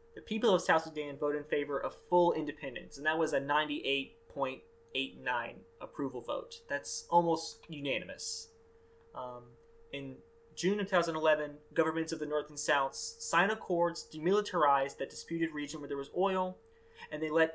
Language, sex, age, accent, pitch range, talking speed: English, male, 20-39, American, 150-190 Hz, 155 wpm